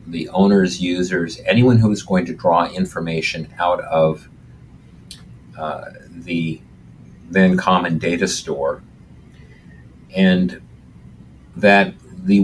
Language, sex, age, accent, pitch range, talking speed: English, male, 50-69, American, 75-100 Hz, 100 wpm